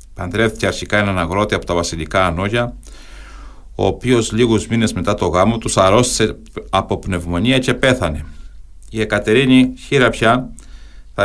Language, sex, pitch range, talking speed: Greek, male, 85-115 Hz, 140 wpm